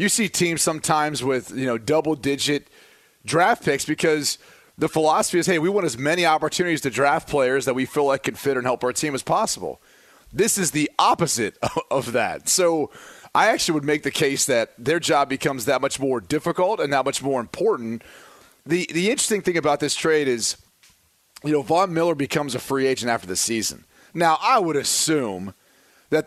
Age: 30-49